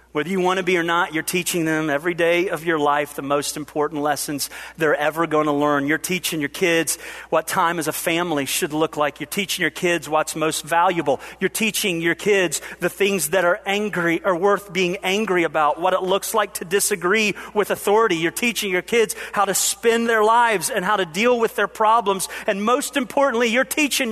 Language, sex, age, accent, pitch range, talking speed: English, male, 40-59, American, 190-260 Hz, 215 wpm